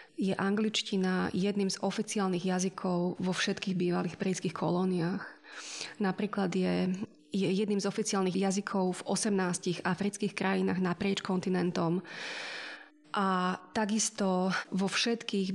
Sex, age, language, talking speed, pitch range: female, 20-39, Slovak, 110 wpm, 185-220 Hz